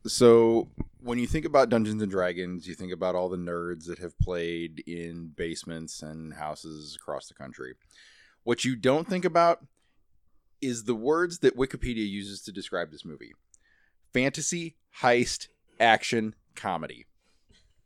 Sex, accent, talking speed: male, American, 145 wpm